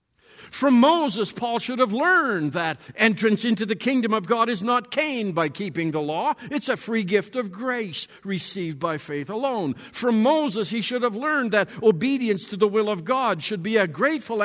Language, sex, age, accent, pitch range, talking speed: English, male, 60-79, American, 175-255 Hz, 195 wpm